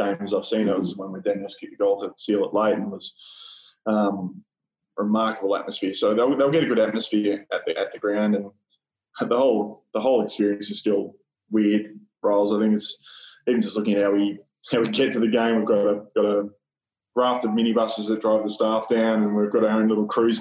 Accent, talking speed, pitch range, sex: Australian, 240 wpm, 105-120 Hz, male